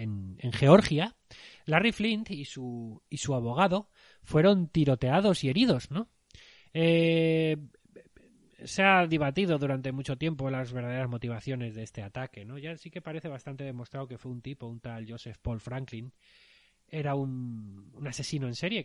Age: 20-39